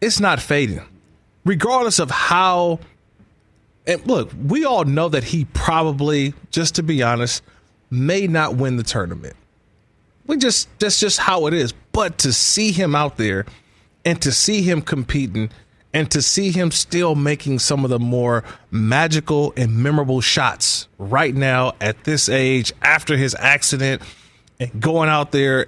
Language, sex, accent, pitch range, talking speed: English, male, American, 120-155 Hz, 155 wpm